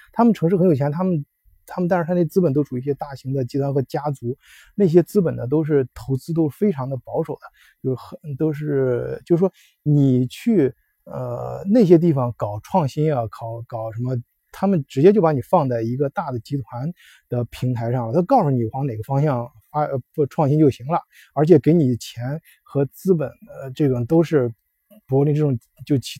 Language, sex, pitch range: Chinese, male, 130-170 Hz